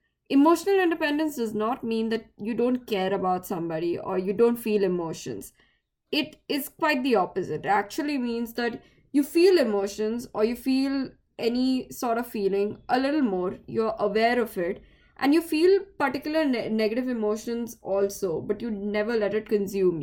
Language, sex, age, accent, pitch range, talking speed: English, female, 10-29, Indian, 200-250 Hz, 165 wpm